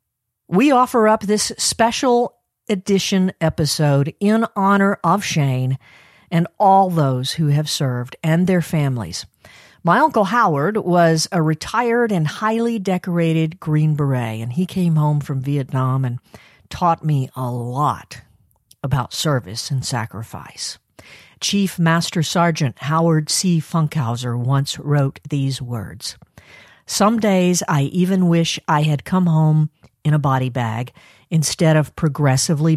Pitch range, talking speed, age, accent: 130-170 Hz, 130 wpm, 50-69, American